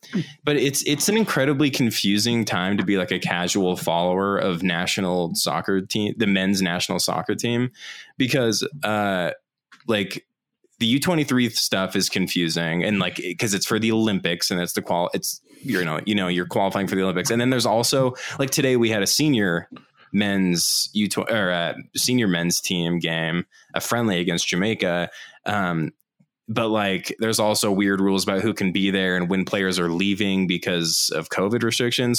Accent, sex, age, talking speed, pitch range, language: American, male, 20-39, 175 wpm, 90-110 Hz, English